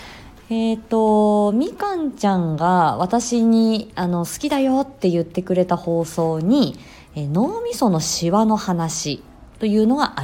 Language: Japanese